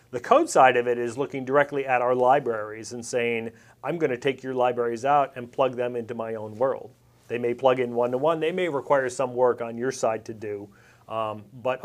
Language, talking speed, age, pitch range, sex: English, 225 wpm, 40-59, 115-130 Hz, male